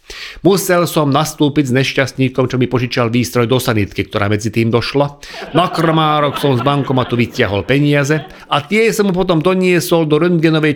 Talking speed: 160 wpm